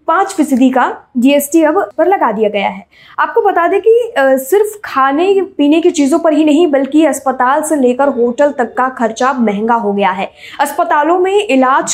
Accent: native